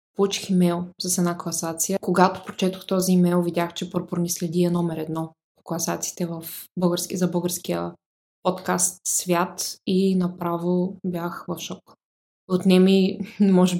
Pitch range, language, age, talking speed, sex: 165-185 Hz, Bulgarian, 20-39, 135 wpm, female